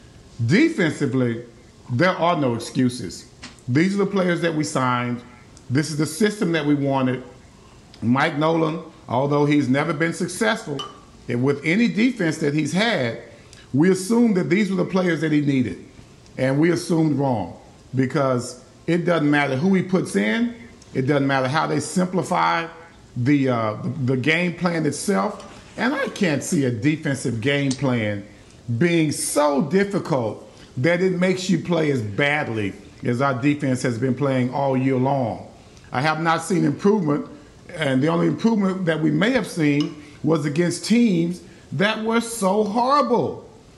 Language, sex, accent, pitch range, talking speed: English, male, American, 130-180 Hz, 160 wpm